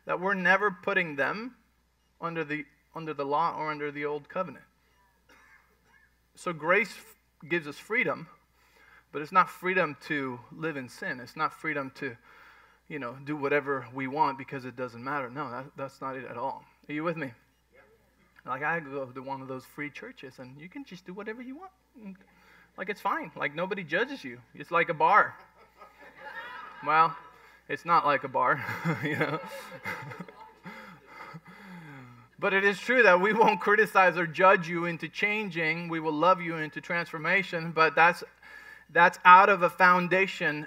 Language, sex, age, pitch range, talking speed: English, male, 20-39, 140-185 Hz, 170 wpm